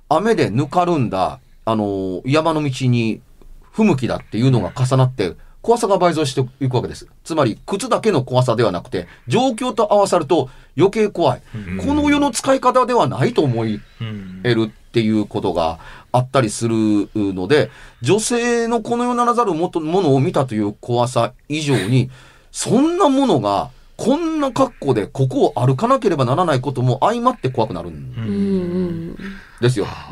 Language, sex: Japanese, male